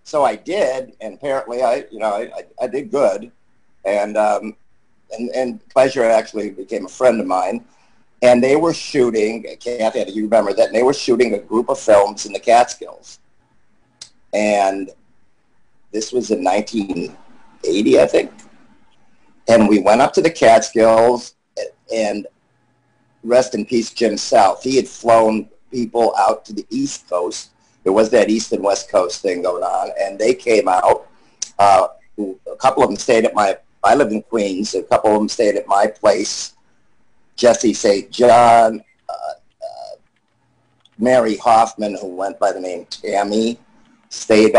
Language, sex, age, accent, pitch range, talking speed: English, male, 50-69, American, 105-135 Hz, 160 wpm